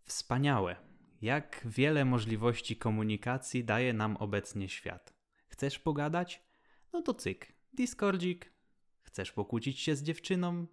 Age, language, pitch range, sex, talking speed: 20-39, Polish, 100-145 Hz, male, 110 wpm